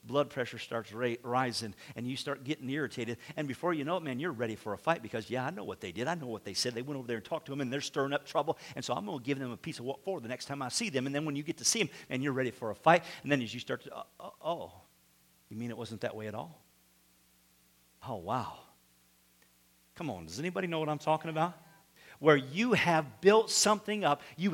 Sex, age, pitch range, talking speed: male, 50-69, 120-190 Hz, 275 wpm